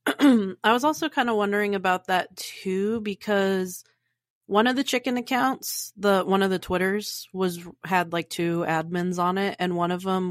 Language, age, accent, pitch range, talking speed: English, 30-49, American, 170-205 Hz, 180 wpm